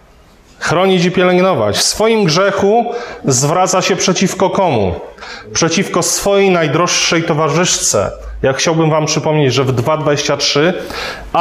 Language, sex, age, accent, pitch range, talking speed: Polish, male, 30-49, native, 120-180 Hz, 110 wpm